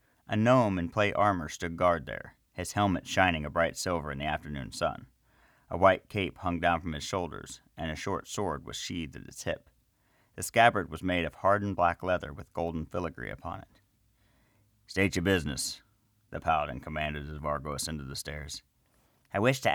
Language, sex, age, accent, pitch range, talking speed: English, male, 40-59, American, 75-100 Hz, 190 wpm